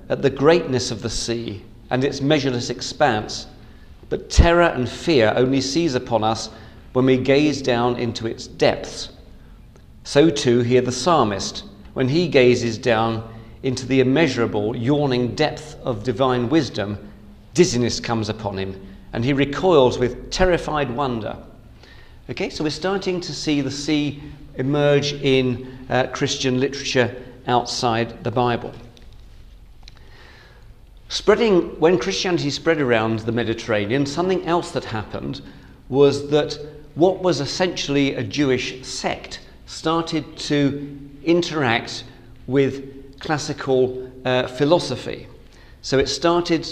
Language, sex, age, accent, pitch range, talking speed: English, male, 40-59, British, 120-145 Hz, 125 wpm